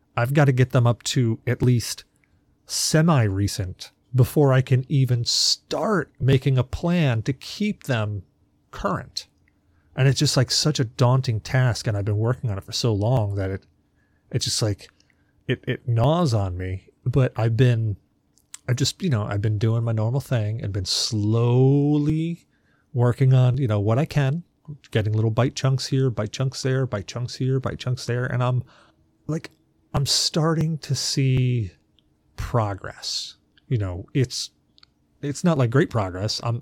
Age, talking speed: 30-49, 170 wpm